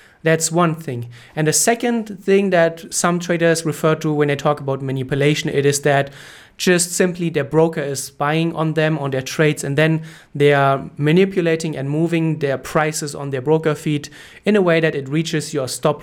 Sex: male